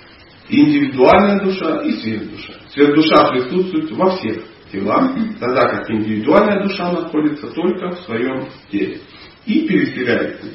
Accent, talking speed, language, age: native, 125 wpm, Russian, 40-59